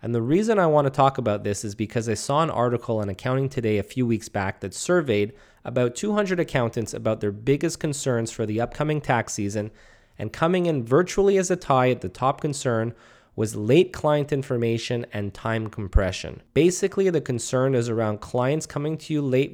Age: 20-39